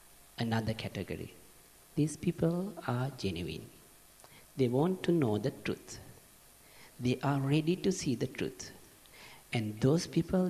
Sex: male